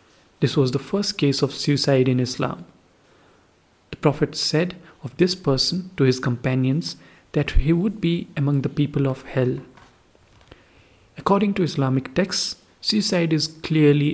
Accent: Indian